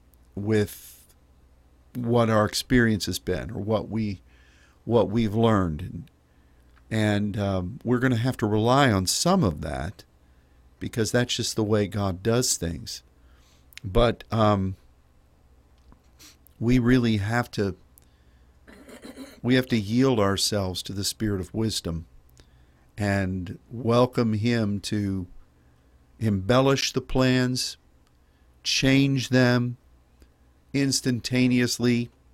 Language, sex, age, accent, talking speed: English, male, 50-69, American, 110 wpm